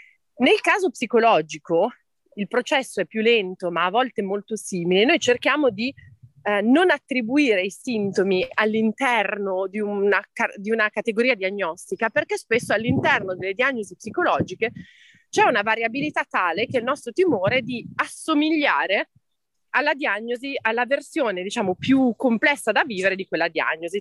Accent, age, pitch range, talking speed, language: native, 30-49, 195-270 Hz, 145 wpm, Italian